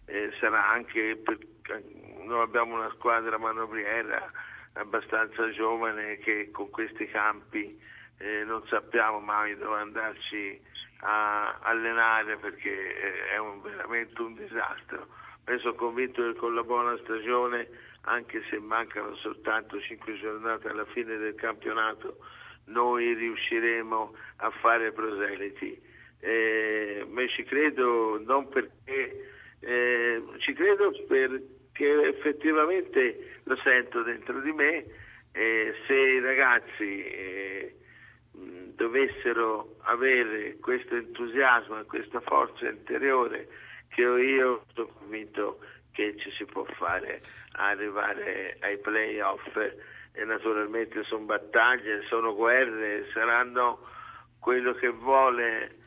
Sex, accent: male, native